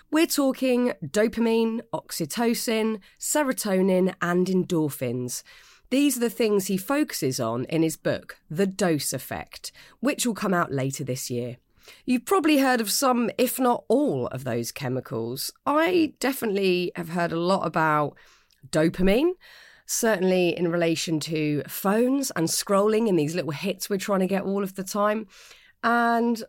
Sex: female